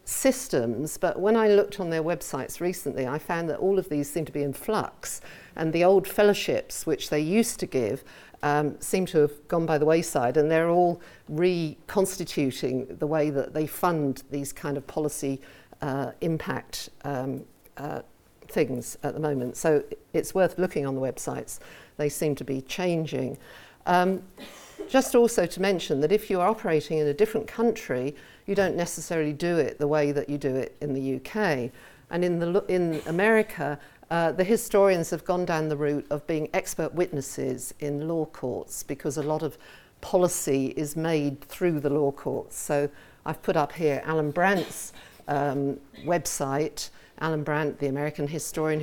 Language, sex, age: English, female, 50-69